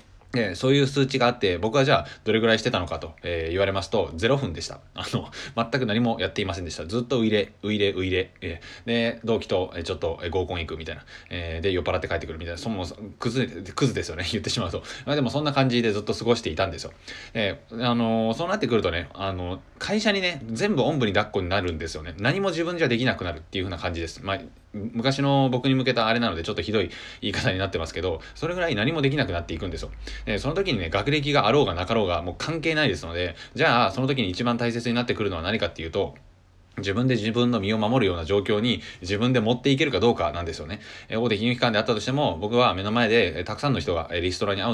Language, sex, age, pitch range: Japanese, male, 20-39, 90-120 Hz